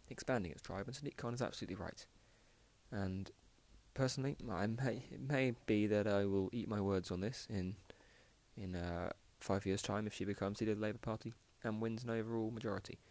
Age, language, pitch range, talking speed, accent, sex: 20-39, English, 95-115 Hz, 195 wpm, British, male